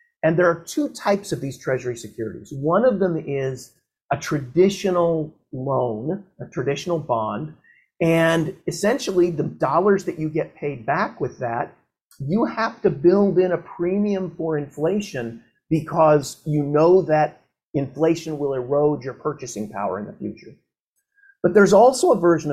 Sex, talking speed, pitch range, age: male, 150 wpm, 145-195 Hz, 50-69